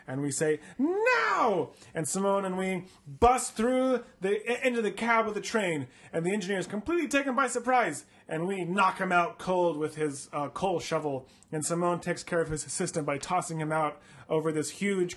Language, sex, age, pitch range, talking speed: English, male, 30-49, 145-185 Hz, 200 wpm